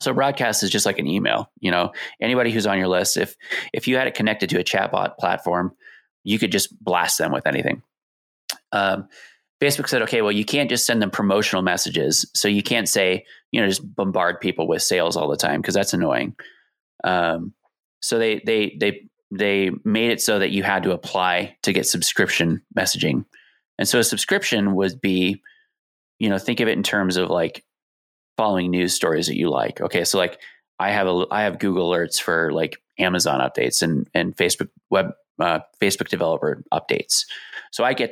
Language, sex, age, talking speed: English, male, 20-39, 195 wpm